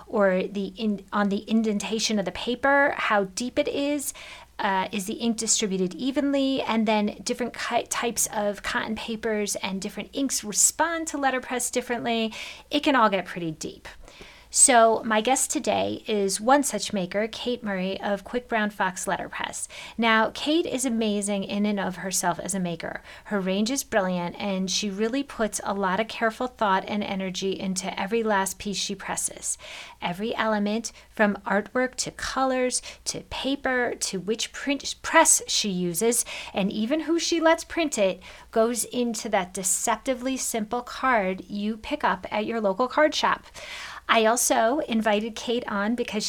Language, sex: English, female